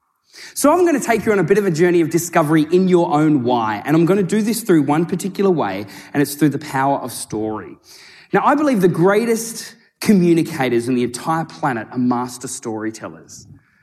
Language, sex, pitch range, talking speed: English, male, 140-185 Hz, 210 wpm